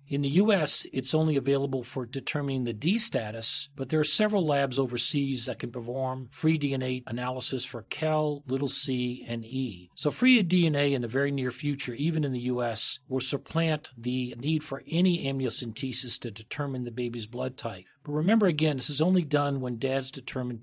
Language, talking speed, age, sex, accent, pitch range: English, 185 wpm, 50-69, male, American, 125-155 Hz